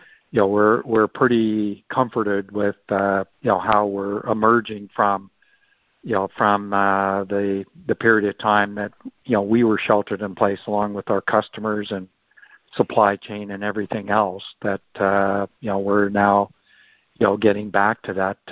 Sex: male